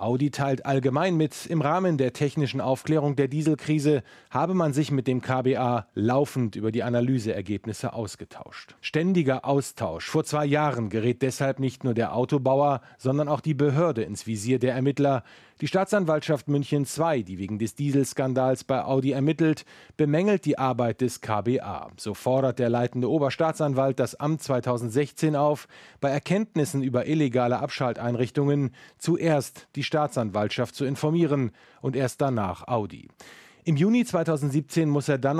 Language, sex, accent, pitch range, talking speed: German, male, German, 125-150 Hz, 145 wpm